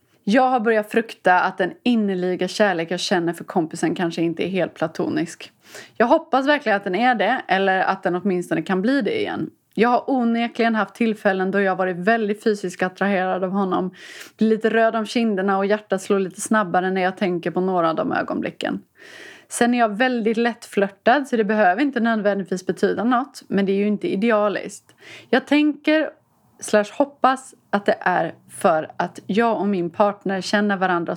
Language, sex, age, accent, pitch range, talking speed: Swedish, female, 30-49, native, 185-235 Hz, 185 wpm